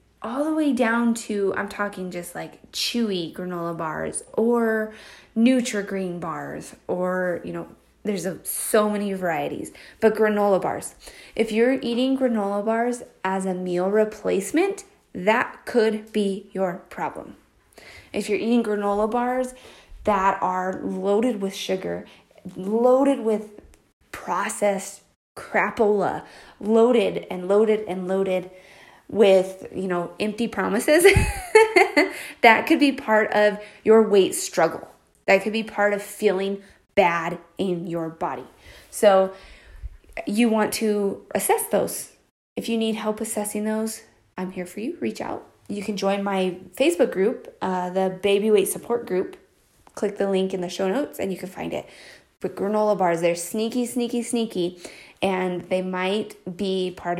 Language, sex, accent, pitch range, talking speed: English, female, American, 185-225 Hz, 145 wpm